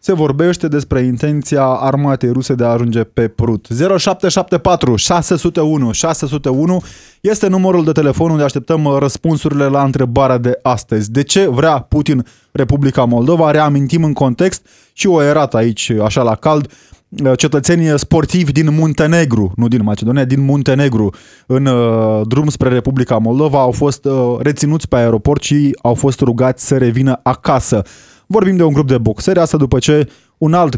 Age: 20-39